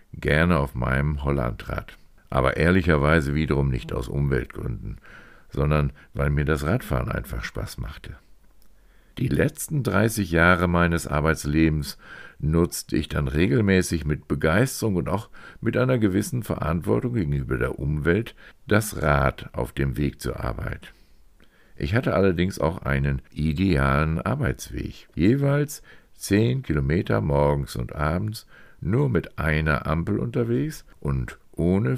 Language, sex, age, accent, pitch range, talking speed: German, male, 50-69, German, 70-90 Hz, 125 wpm